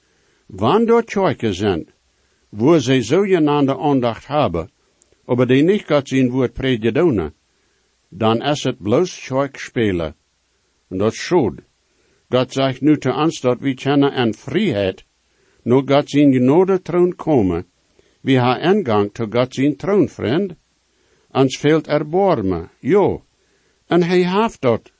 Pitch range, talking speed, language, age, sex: 115-150 Hz, 135 wpm, English, 60-79, male